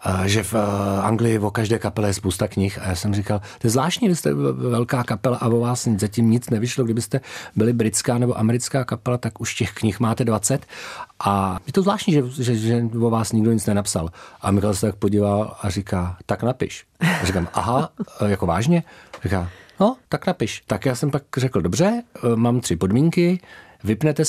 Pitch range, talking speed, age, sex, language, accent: 95-125 Hz, 200 wpm, 40-59, male, Czech, native